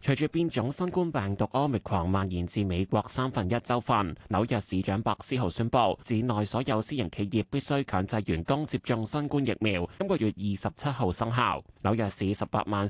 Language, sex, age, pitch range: Chinese, male, 20-39, 100-140 Hz